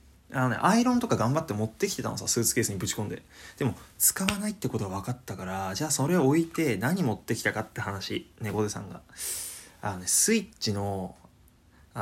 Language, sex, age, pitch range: Japanese, male, 20-39, 100-140 Hz